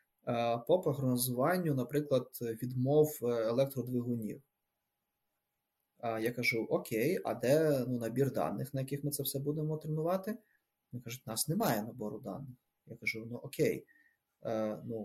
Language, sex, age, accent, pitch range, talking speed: Ukrainian, male, 20-39, native, 120-155 Hz, 130 wpm